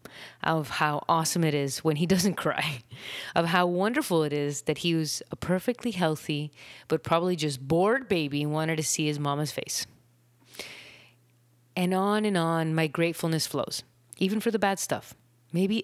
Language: English